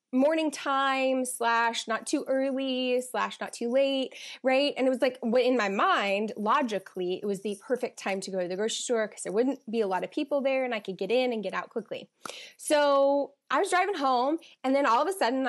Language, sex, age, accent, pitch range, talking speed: English, female, 20-39, American, 210-280 Hz, 230 wpm